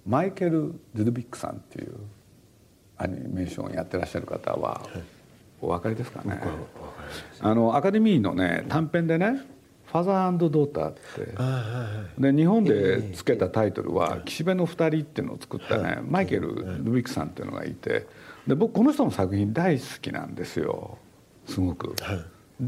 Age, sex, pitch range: 50-69, male, 100-160 Hz